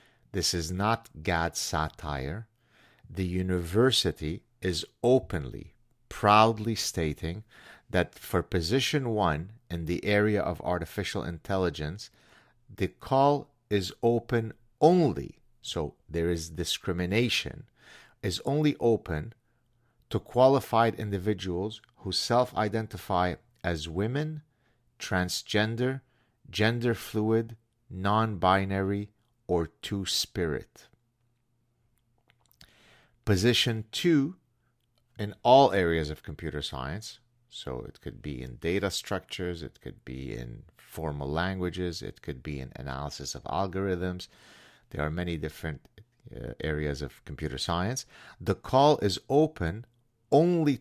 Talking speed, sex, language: 105 wpm, male, English